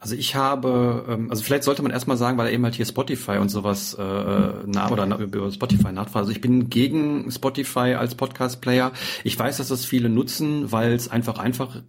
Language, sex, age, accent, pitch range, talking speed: German, male, 40-59, German, 110-125 Hz, 190 wpm